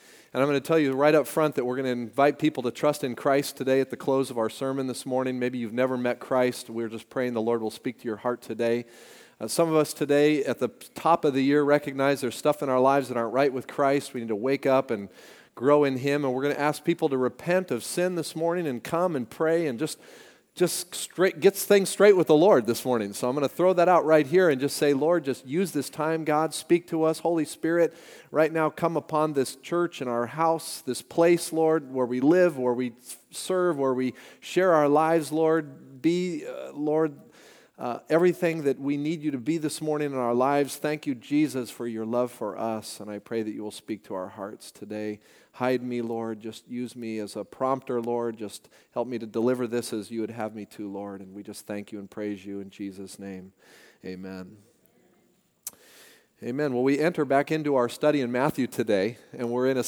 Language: English